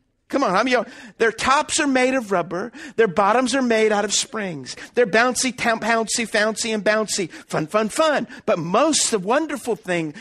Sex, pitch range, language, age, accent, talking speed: male, 240-335 Hz, English, 50-69, American, 180 wpm